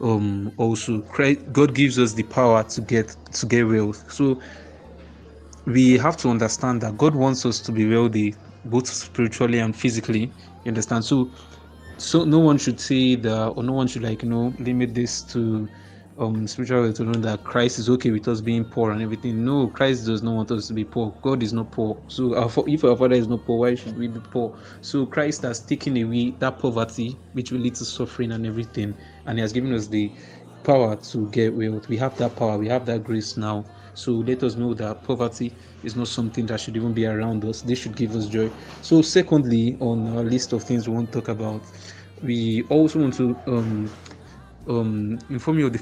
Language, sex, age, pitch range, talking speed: English, male, 20-39, 110-125 Hz, 210 wpm